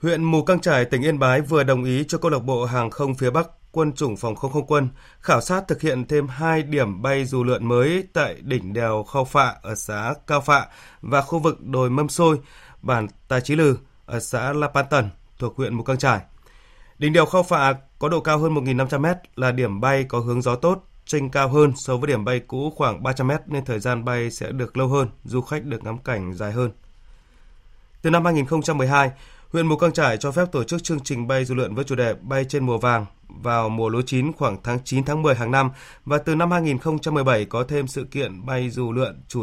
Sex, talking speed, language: male, 230 wpm, Vietnamese